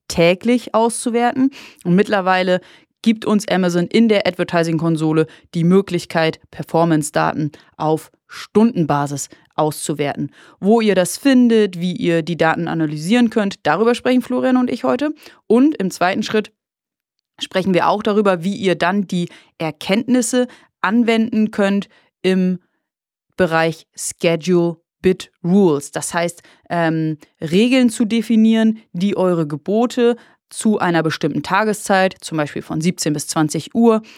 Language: German